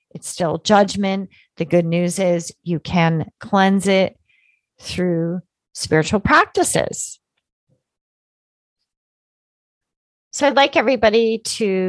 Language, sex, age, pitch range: English, female, 30-49, 160-200 Hz